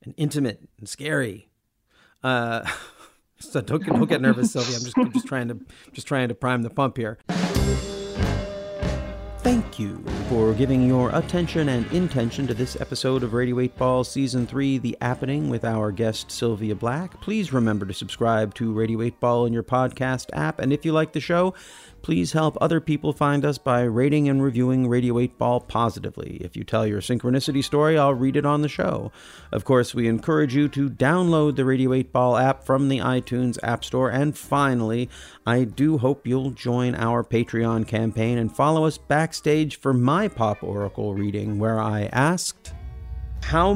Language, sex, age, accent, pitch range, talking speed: English, male, 40-59, American, 110-140 Hz, 180 wpm